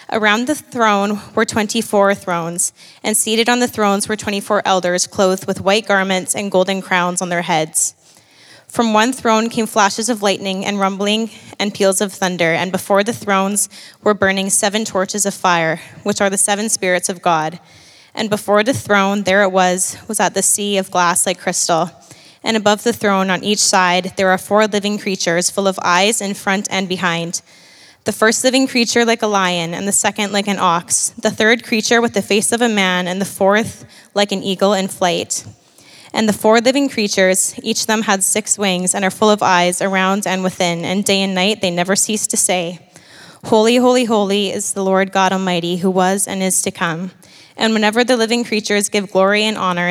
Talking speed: 205 wpm